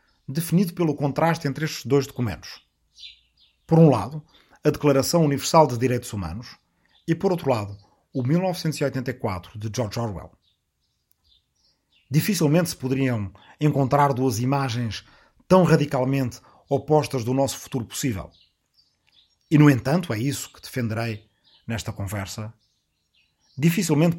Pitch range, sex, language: 105-145 Hz, male, Portuguese